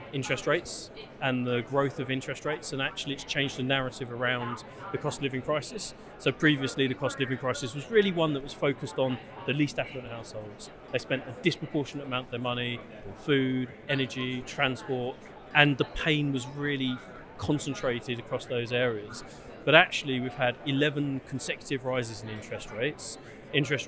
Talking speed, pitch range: 175 wpm, 125-145 Hz